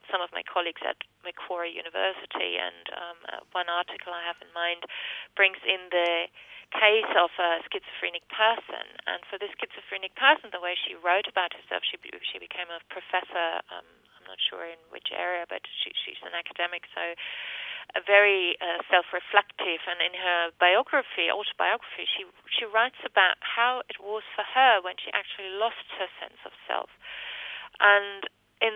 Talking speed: 170 wpm